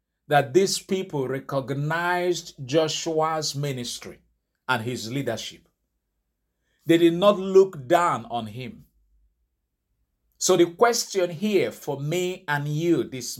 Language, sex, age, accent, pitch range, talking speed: English, male, 50-69, Nigerian, 115-185 Hz, 110 wpm